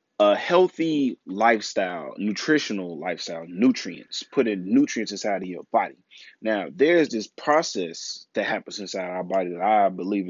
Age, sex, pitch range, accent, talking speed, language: 20-39, male, 100-125 Hz, American, 145 wpm, English